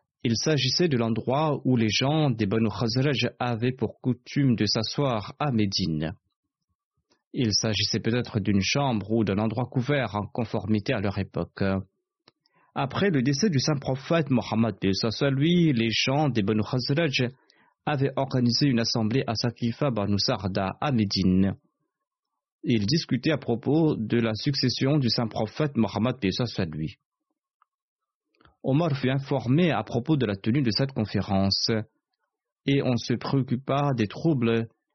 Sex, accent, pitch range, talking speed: male, French, 110-140 Hz, 145 wpm